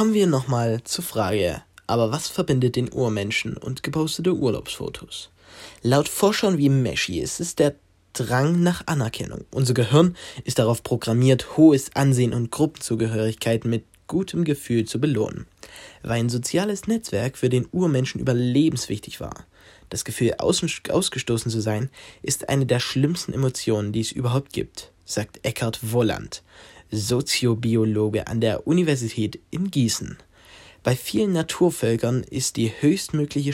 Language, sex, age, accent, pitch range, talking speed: German, male, 10-29, German, 115-145 Hz, 135 wpm